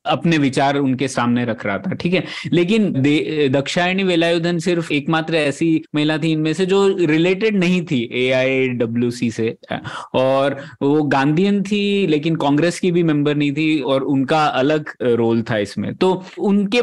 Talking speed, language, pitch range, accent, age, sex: 160 wpm, Hindi, 130-165 Hz, native, 20-39, male